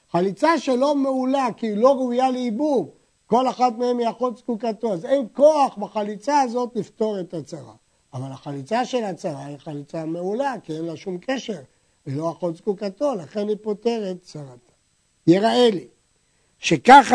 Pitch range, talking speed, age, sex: 170-240 Hz, 155 wpm, 60-79, male